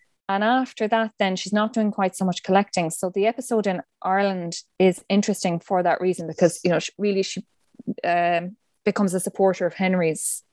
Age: 20-39